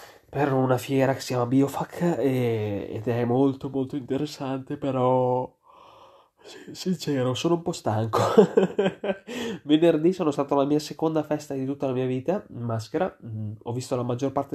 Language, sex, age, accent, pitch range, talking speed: Italian, male, 20-39, native, 115-145 Hz, 155 wpm